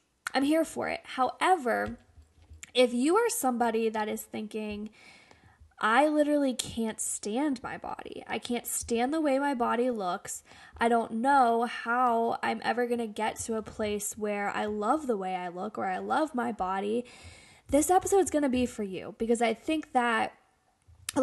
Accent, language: American, English